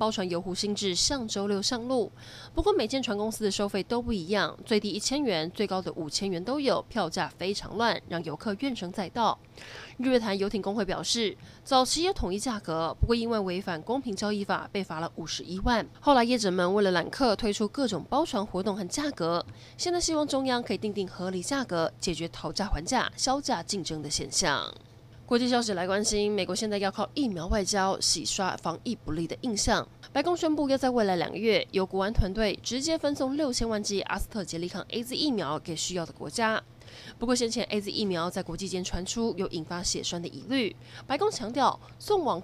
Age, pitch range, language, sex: 20-39, 180-240 Hz, Chinese, female